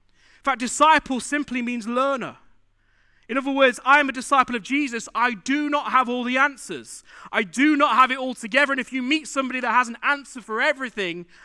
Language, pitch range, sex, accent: English, 205-270 Hz, male, British